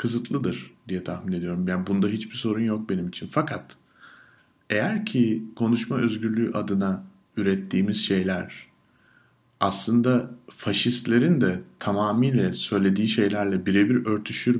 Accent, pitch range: native, 100-120 Hz